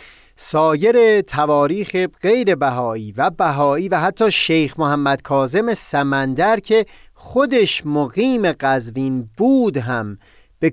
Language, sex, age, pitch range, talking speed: Persian, male, 30-49, 130-185 Hz, 105 wpm